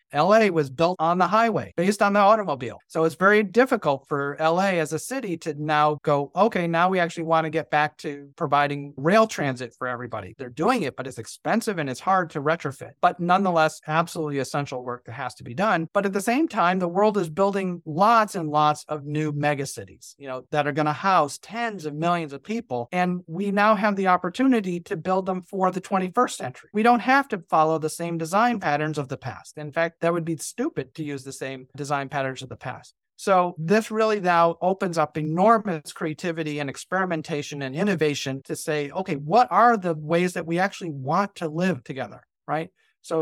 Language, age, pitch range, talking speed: English, 40-59, 150-190 Hz, 205 wpm